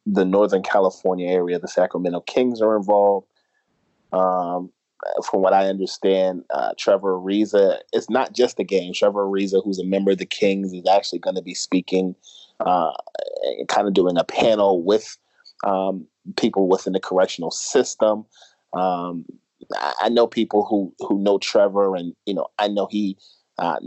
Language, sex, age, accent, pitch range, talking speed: English, male, 30-49, American, 95-110 Hz, 160 wpm